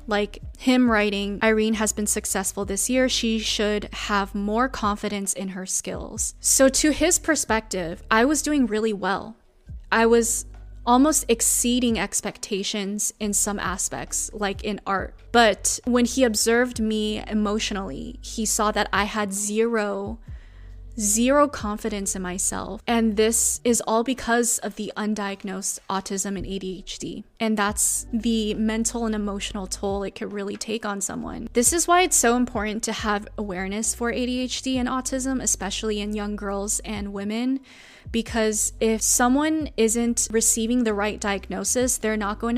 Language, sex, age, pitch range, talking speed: English, female, 20-39, 205-235 Hz, 150 wpm